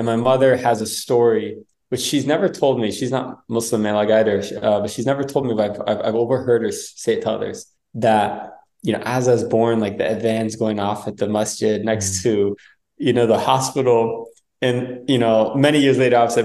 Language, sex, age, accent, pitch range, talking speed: English, male, 20-39, American, 110-125 Hz, 220 wpm